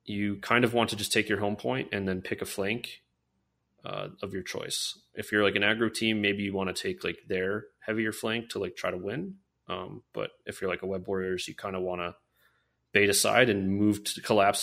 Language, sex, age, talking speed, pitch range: English, male, 30-49, 240 wpm, 90-105 Hz